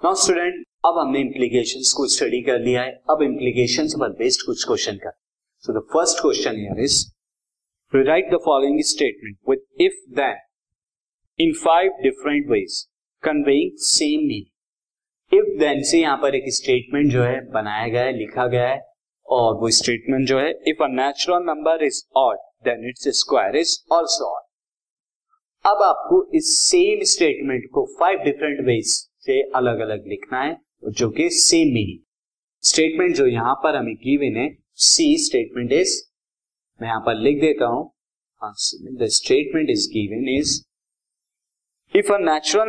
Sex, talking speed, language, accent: male, 135 wpm, Hindi, native